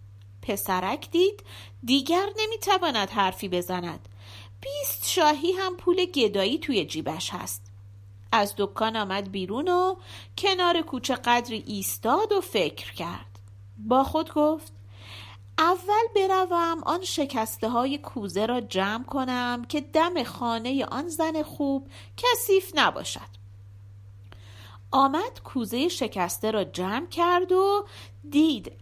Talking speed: 110 wpm